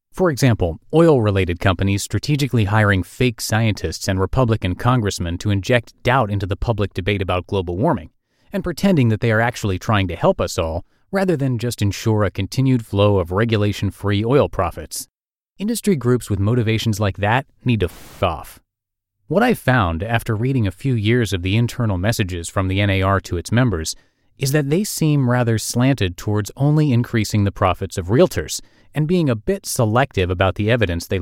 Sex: male